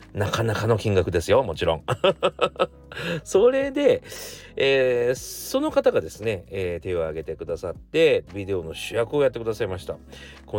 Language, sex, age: Japanese, male, 40-59